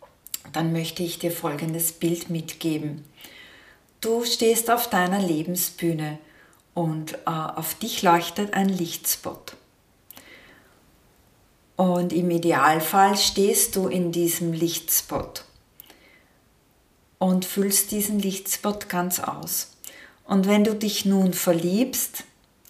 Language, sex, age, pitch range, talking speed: German, female, 40-59, 160-190 Hz, 105 wpm